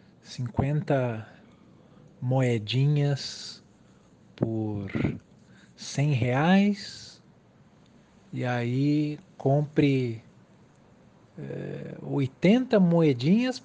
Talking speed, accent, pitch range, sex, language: 45 wpm, Brazilian, 120-170 Hz, male, Portuguese